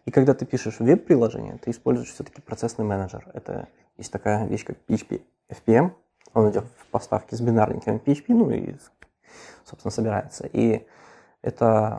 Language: Russian